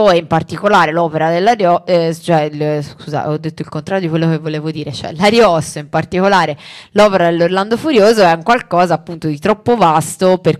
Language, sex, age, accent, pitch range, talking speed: Italian, female, 20-39, native, 155-195 Hz, 180 wpm